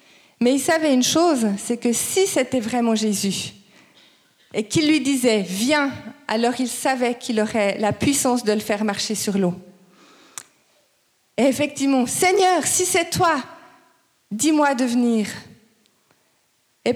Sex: female